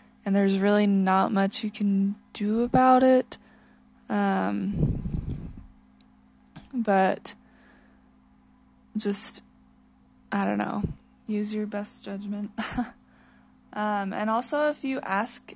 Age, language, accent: 20-39, English, American